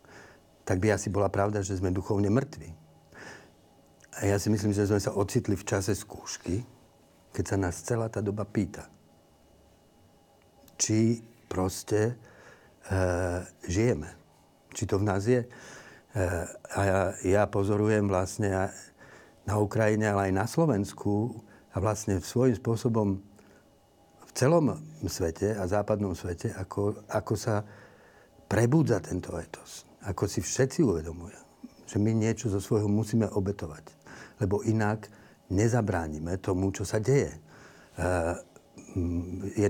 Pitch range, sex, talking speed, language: 95-110 Hz, male, 125 wpm, Slovak